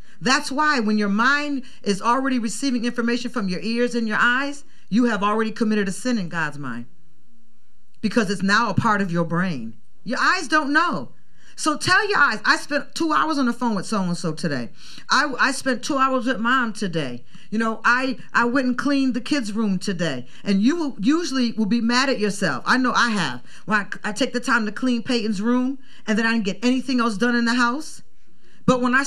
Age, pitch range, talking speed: 40-59, 195-265 Hz, 220 wpm